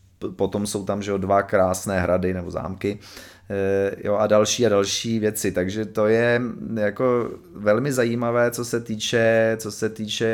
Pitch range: 95-110 Hz